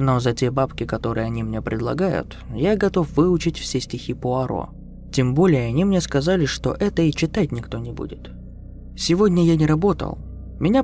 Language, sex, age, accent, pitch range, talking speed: Russian, male, 20-39, native, 115-165 Hz, 170 wpm